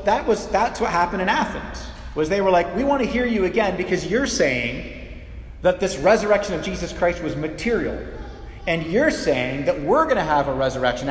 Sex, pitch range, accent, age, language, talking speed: male, 140-200 Hz, American, 30-49, English, 200 wpm